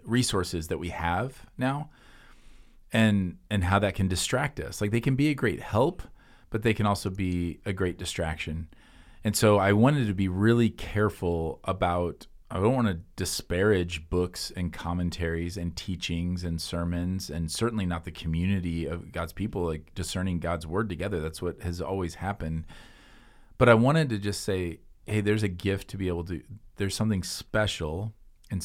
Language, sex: English, male